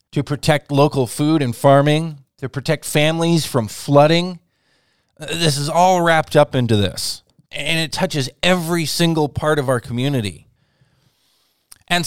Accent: American